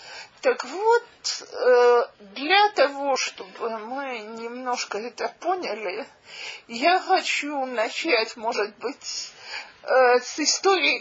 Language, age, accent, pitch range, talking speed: Russian, 40-59, native, 235-365 Hz, 85 wpm